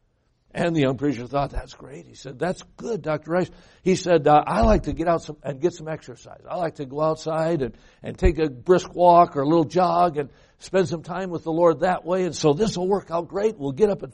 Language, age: English, 60-79